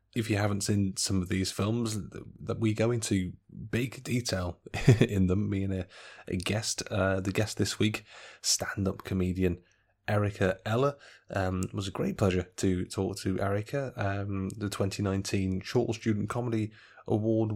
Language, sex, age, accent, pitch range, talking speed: English, male, 30-49, British, 95-110 Hz, 155 wpm